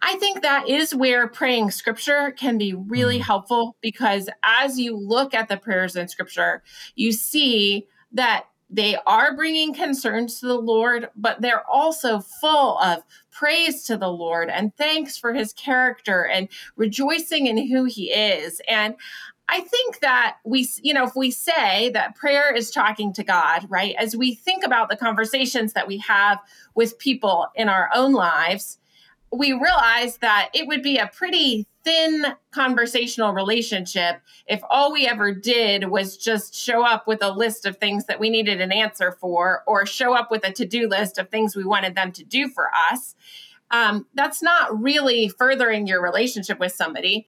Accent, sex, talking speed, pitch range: American, female, 175 wpm, 210-280 Hz